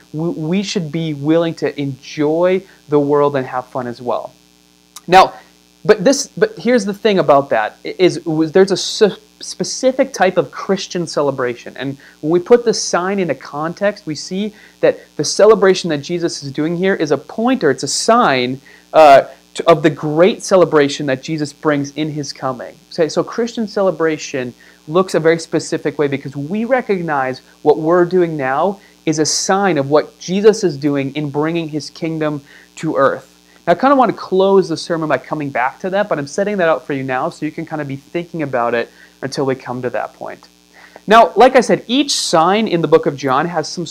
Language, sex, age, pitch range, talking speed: English, male, 30-49, 140-185 Hz, 200 wpm